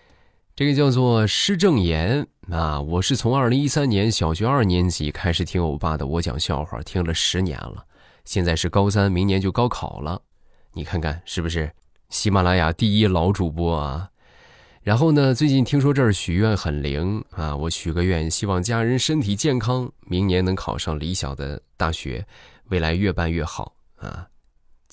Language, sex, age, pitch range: Chinese, male, 20-39, 80-105 Hz